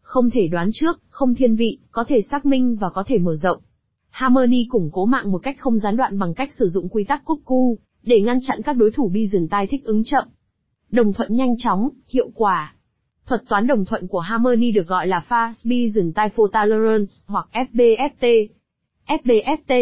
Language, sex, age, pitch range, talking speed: Vietnamese, female, 20-39, 205-260 Hz, 205 wpm